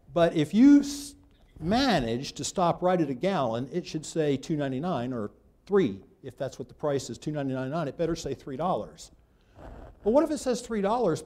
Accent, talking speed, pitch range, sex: American, 180 wpm, 115-175 Hz, male